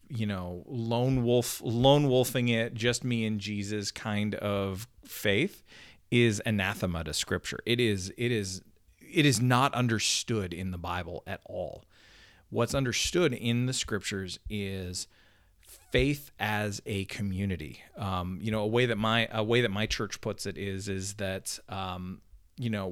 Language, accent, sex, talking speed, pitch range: English, American, male, 160 wpm, 95-120 Hz